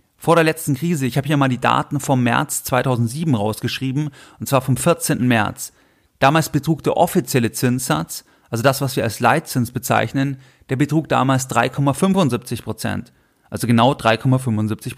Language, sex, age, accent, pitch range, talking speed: German, male, 30-49, German, 120-150 Hz, 155 wpm